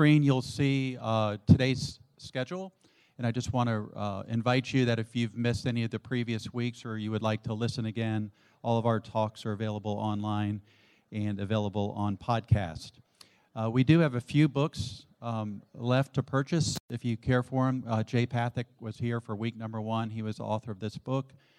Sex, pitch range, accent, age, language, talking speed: male, 105-125 Hz, American, 50-69, English, 195 wpm